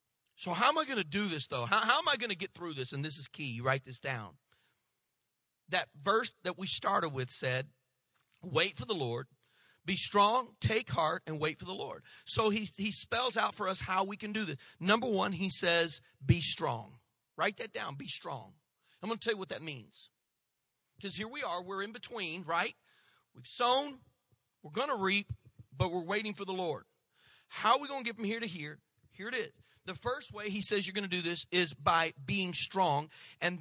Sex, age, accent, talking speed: male, 40-59, American, 220 wpm